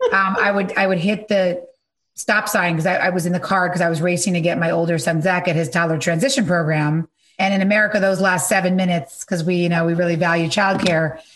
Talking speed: 245 wpm